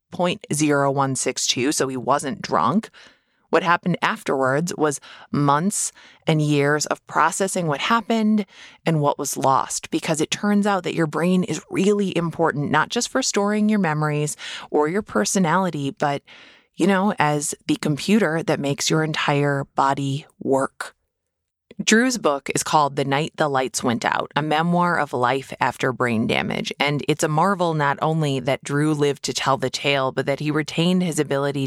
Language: English